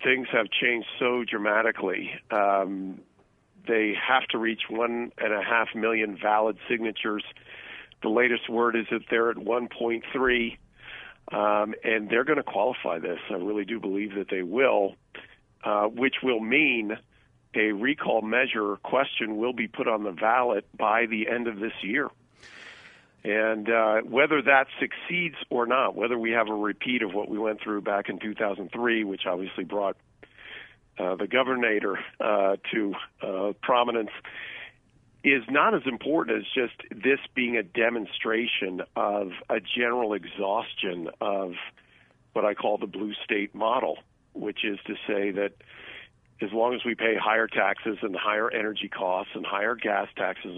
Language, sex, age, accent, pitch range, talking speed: English, male, 50-69, American, 105-120 Hz, 155 wpm